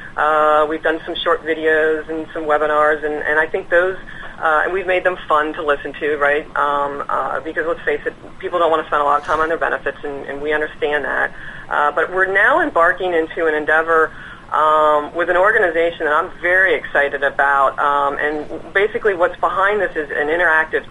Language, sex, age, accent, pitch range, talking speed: English, female, 40-59, American, 145-170 Hz, 210 wpm